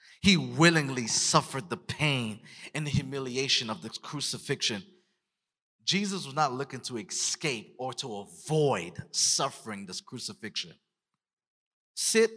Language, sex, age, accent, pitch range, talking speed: English, male, 30-49, American, 145-200 Hz, 115 wpm